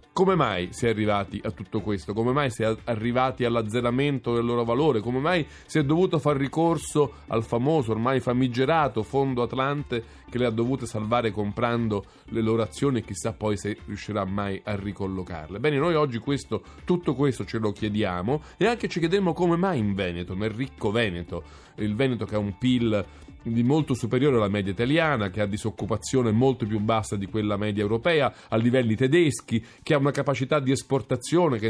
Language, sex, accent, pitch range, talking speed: Italian, male, native, 105-140 Hz, 185 wpm